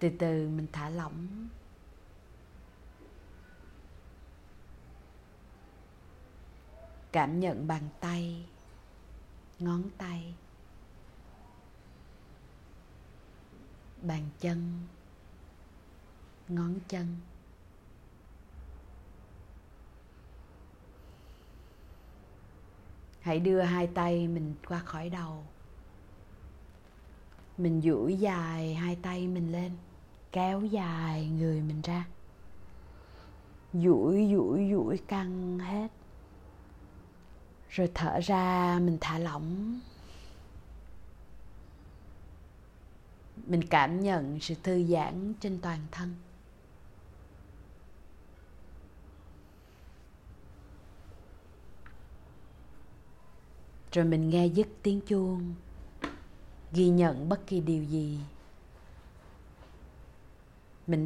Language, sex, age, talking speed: Vietnamese, female, 20-39, 65 wpm